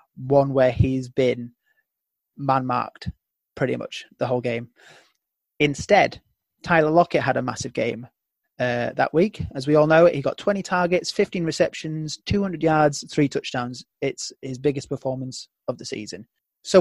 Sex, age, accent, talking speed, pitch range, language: male, 30-49, British, 150 wpm, 130-160 Hz, English